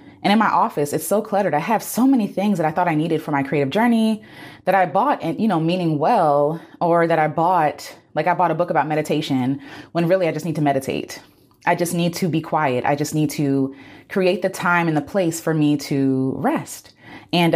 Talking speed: 230 wpm